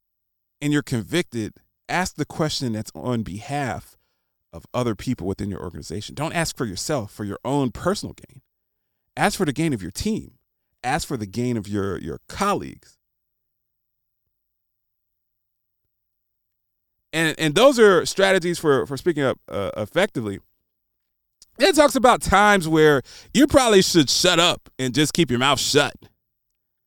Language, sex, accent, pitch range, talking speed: English, male, American, 110-160 Hz, 145 wpm